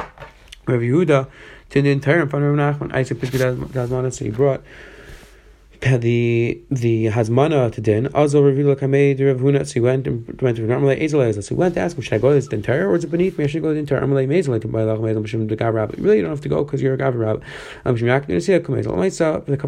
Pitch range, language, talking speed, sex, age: 115-145 Hz, English, 175 wpm, male, 20-39